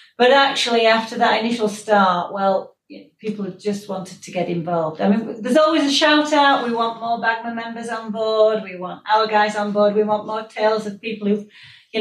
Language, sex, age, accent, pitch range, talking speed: English, female, 40-59, British, 190-230 Hz, 210 wpm